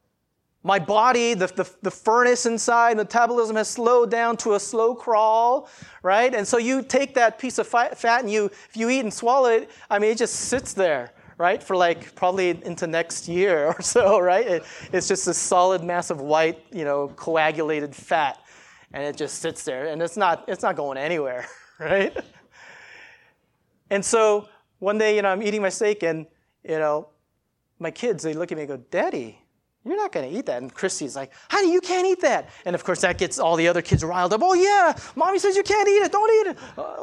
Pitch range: 175-250 Hz